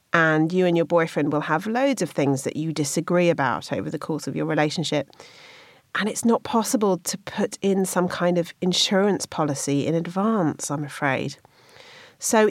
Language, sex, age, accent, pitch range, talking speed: English, female, 40-59, British, 145-205 Hz, 175 wpm